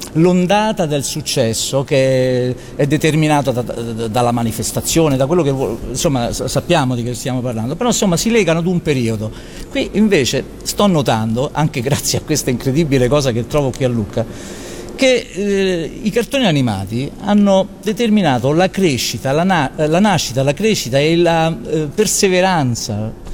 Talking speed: 155 wpm